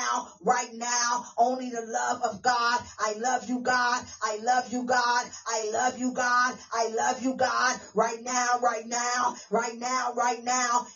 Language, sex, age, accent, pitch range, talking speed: English, female, 40-59, American, 185-230 Hz, 170 wpm